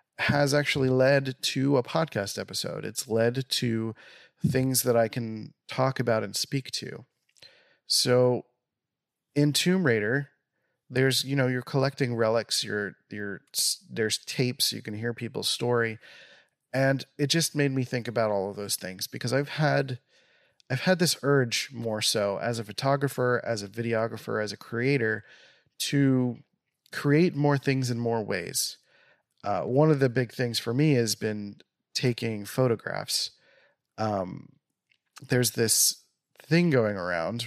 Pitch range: 110-140 Hz